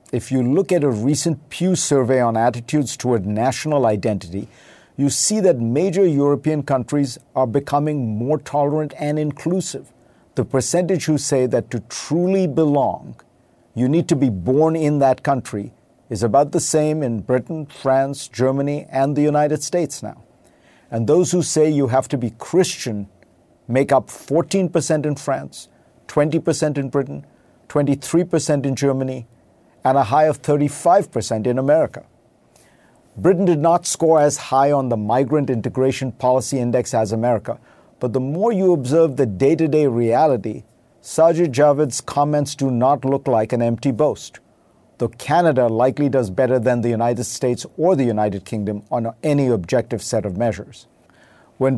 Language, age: English, 50-69